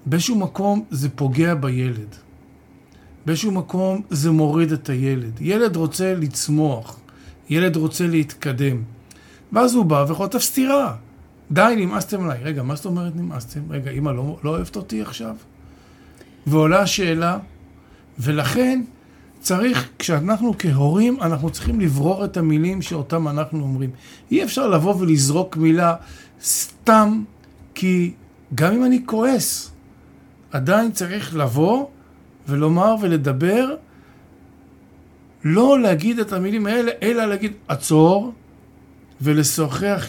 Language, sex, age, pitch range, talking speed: Hebrew, male, 50-69, 140-190 Hz, 115 wpm